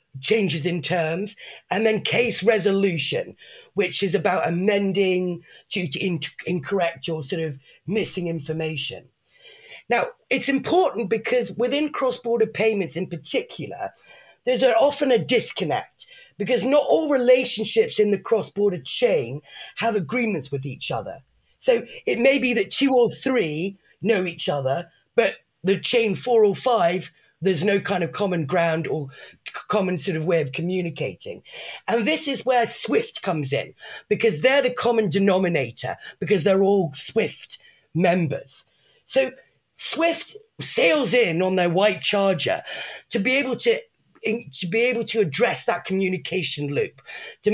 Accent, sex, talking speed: British, female, 140 wpm